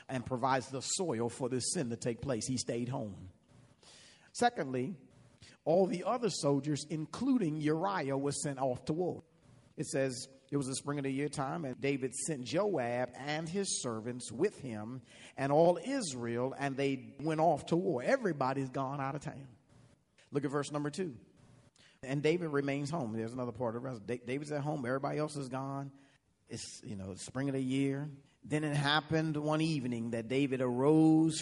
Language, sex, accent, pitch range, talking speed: English, male, American, 120-155 Hz, 180 wpm